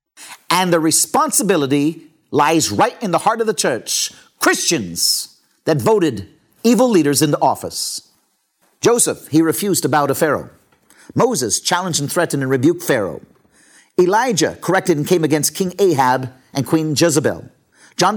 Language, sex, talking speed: English, male, 145 wpm